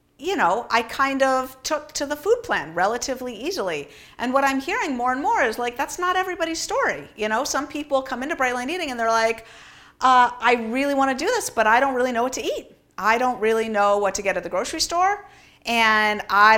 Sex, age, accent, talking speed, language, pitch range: female, 50-69, American, 235 wpm, English, 195-265 Hz